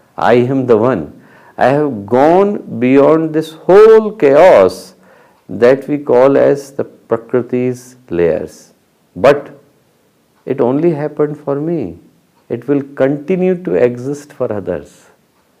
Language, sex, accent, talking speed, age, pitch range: English, male, Indian, 120 wpm, 50-69, 115-150 Hz